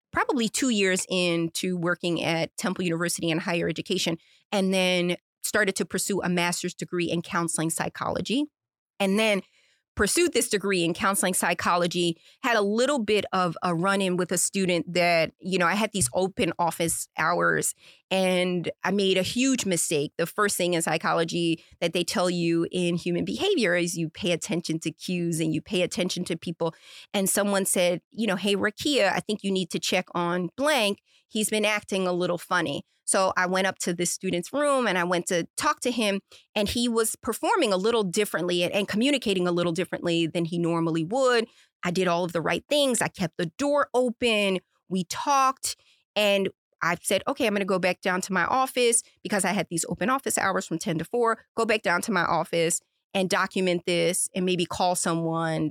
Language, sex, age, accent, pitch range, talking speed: English, female, 30-49, American, 175-210 Hz, 195 wpm